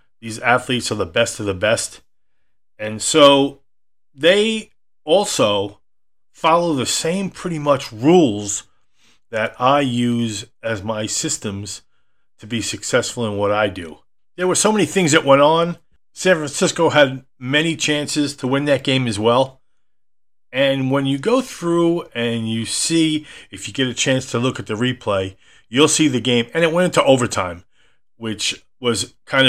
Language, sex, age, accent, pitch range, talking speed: English, male, 40-59, American, 115-155 Hz, 165 wpm